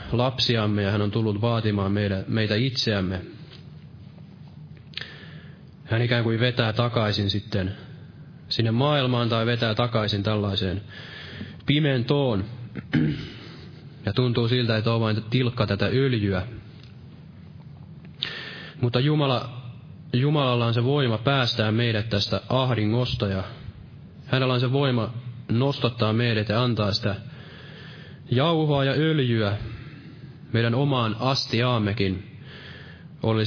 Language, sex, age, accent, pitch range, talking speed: Finnish, male, 20-39, native, 110-145 Hz, 105 wpm